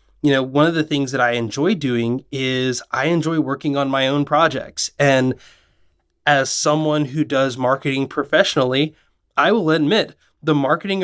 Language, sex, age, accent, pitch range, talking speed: English, male, 20-39, American, 125-155 Hz, 165 wpm